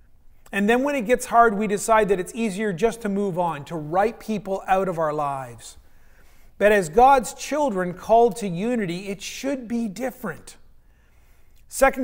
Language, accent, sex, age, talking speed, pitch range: English, American, male, 40-59, 170 wpm, 180-235 Hz